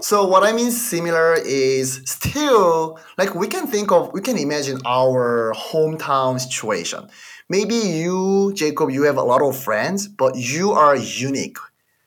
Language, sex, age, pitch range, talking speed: English, male, 30-49, 125-180 Hz, 155 wpm